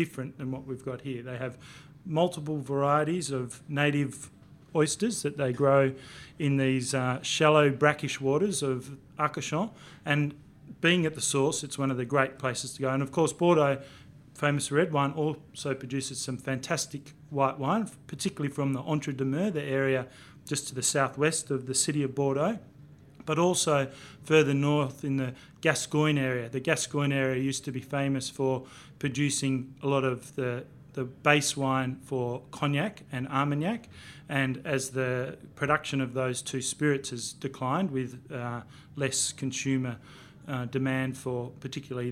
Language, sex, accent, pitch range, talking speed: English, male, Australian, 130-150 Hz, 160 wpm